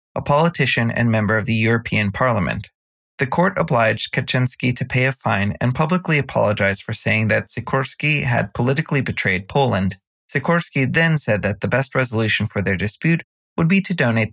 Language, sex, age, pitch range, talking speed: English, male, 30-49, 105-140 Hz, 170 wpm